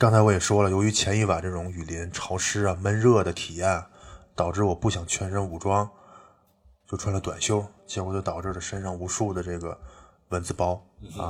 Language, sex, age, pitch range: Chinese, male, 20-39, 90-110 Hz